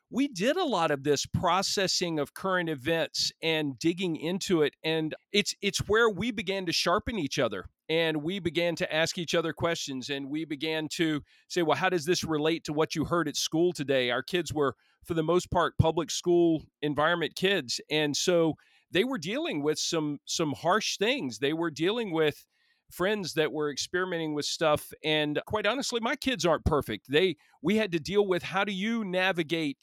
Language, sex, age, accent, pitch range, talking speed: English, male, 40-59, American, 150-180 Hz, 195 wpm